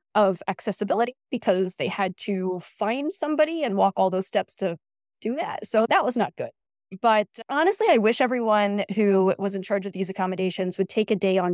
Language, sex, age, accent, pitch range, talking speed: English, female, 20-39, American, 190-250 Hz, 200 wpm